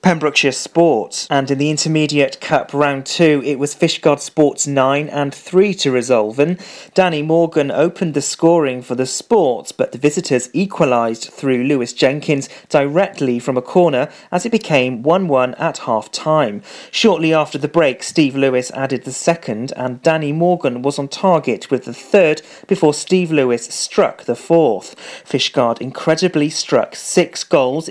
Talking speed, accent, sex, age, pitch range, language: 155 wpm, British, male, 40-59, 130-170 Hz, English